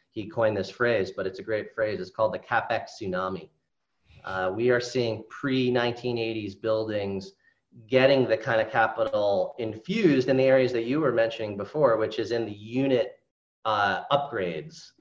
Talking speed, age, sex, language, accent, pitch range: 170 wpm, 30-49, male, English, American, 110-140 Hz